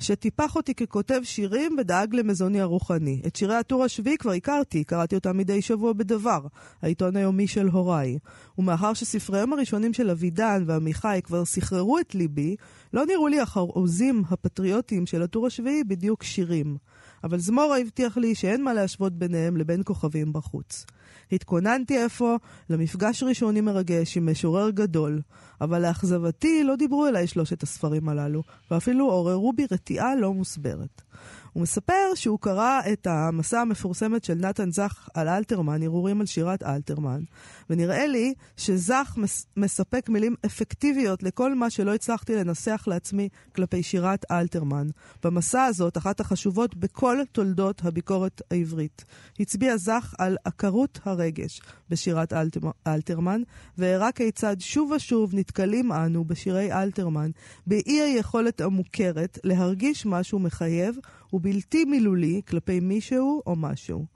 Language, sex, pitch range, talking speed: Hebrew, female, 170-230 Hz, 135 wpm